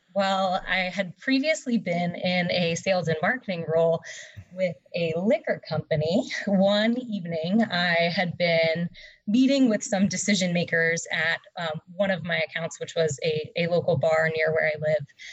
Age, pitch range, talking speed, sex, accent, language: 20-39, 170-210 Hz, 160 wpm, female, American, English